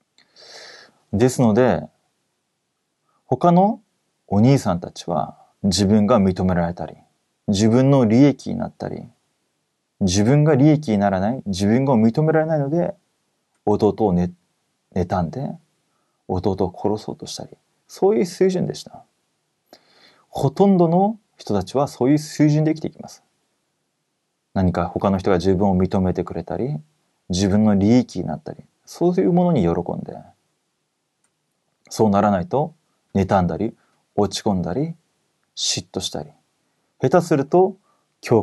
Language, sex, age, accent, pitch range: Korean, male, 30-49, Japanese, 100-170 Hz